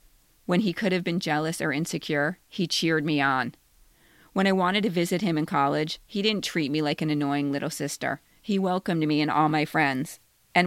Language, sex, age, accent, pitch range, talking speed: English, female, 30-49, American, 150-180 Hz, 210 wpm